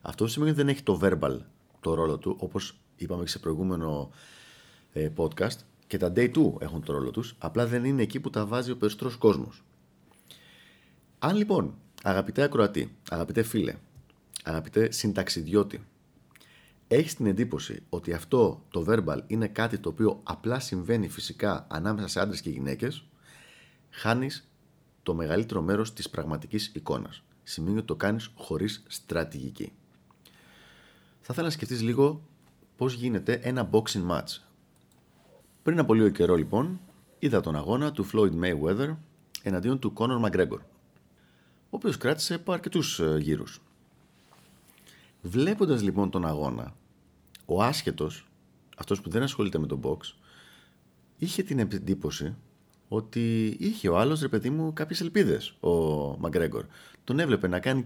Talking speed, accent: 140 wpm, native